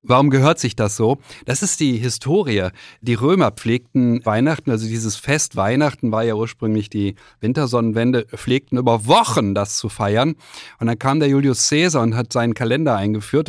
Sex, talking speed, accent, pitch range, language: male, 175 wpm, German, 115-150 Hz, German